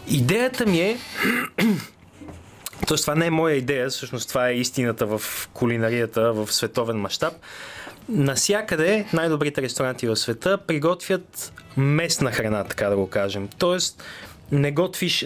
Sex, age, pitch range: male, 20-39, 125-180 Hz